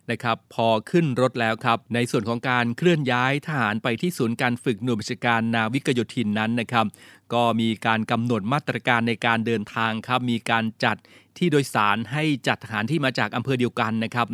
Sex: male